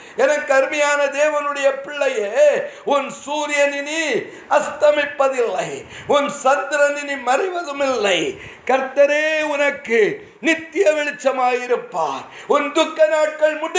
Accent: native